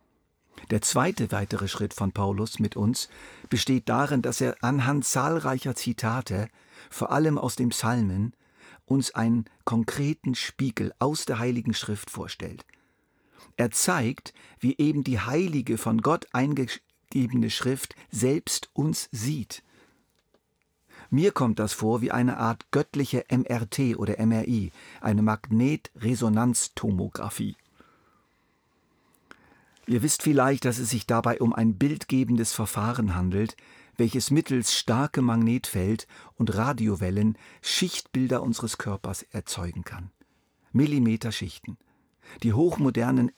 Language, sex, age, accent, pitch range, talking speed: German, male, 50-69, German, 110-130 Hz, 110 wpm